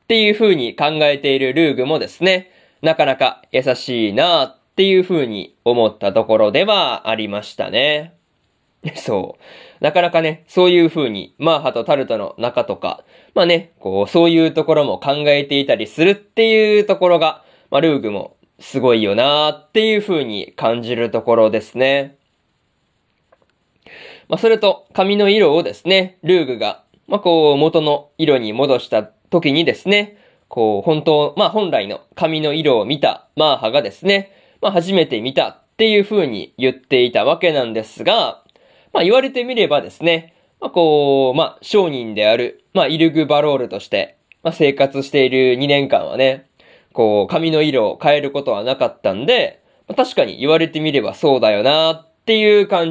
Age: 20-39